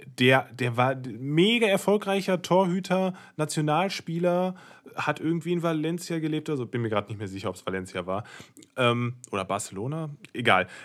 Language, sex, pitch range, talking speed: German, male, 115-150 Hz, 150 wpm